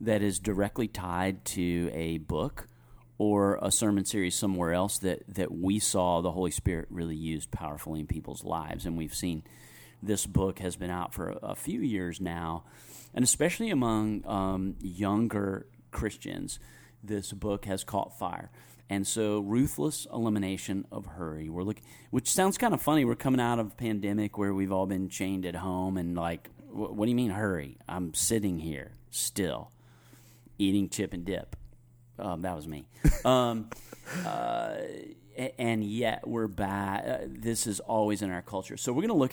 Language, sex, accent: English, male, American